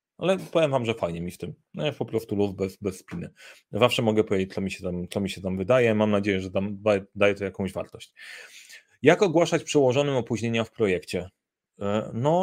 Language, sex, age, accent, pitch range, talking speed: Polish, male, 30-49, native, 100-145 Hz, 195 wpm